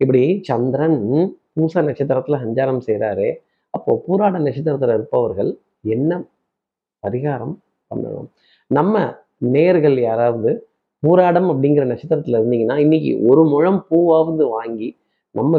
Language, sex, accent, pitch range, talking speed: Tamil, male, native, 130-175 Hz, 100 wpm